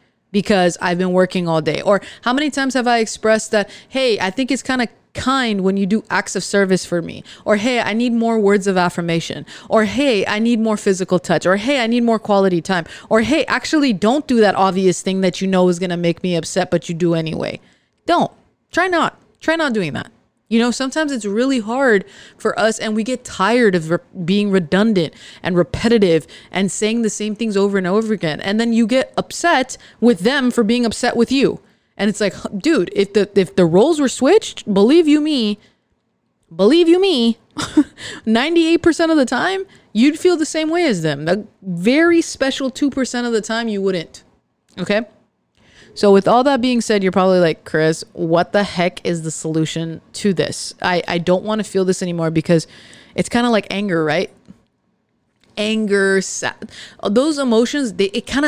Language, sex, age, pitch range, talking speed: English, female, 20-39, 185-245 Hz, 200 wpm